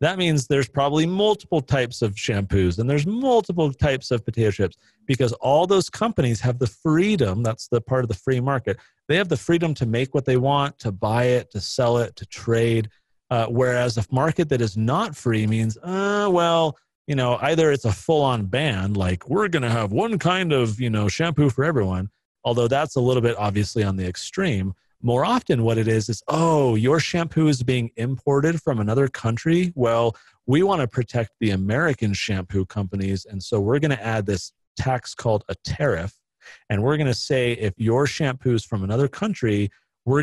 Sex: male